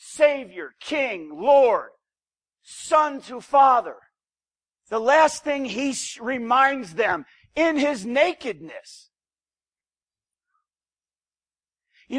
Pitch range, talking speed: 225-285 Hz, 80 wpm